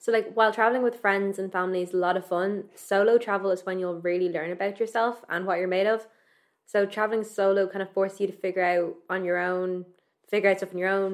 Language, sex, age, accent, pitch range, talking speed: English, female, 20-39, Irish, 180-205 Hz, 250 wpm